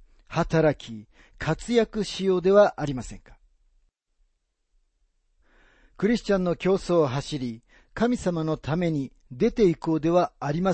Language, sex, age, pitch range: Japanese, male, 40-59, 115-180 Hz